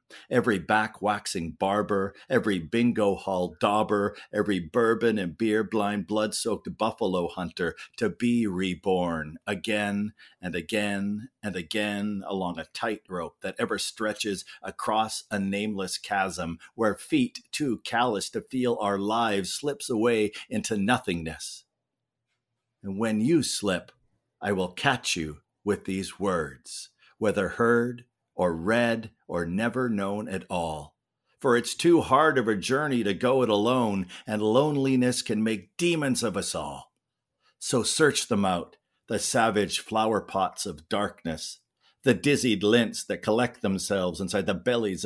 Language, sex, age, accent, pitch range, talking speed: English, male, 50-69, American, 95-120 Hz, 140 wpm